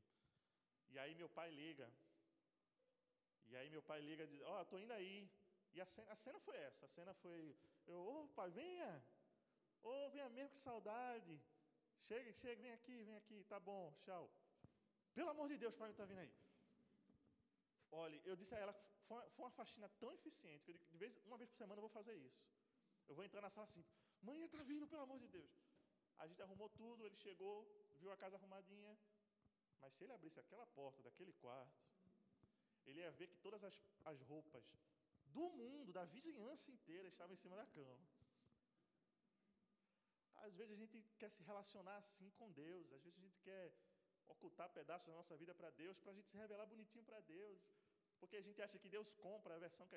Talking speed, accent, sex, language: 200 wpm, Brazilian, male, Portuguese